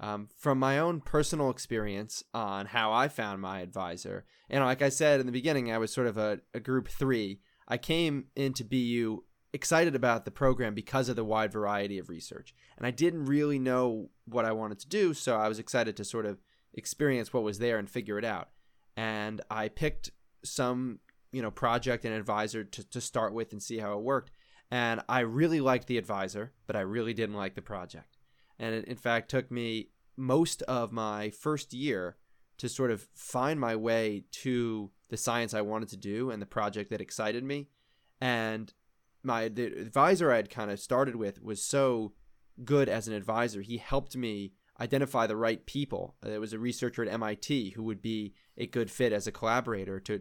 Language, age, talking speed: English, 20-39, 200 wpm